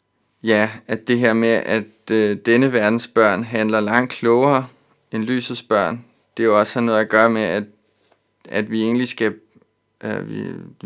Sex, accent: male, native